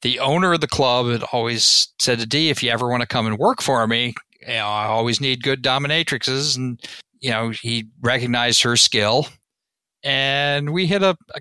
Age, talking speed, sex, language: 50-69, 205 wpm, male, English